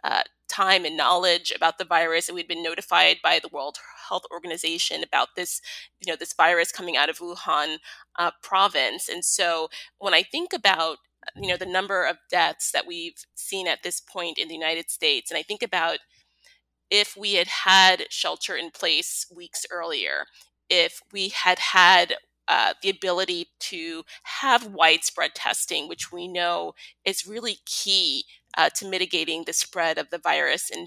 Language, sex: English, female